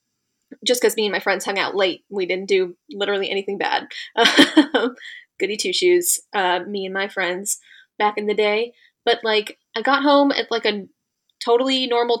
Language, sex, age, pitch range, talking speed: English, female, 20-39, 210-305 Hz, 180 wpm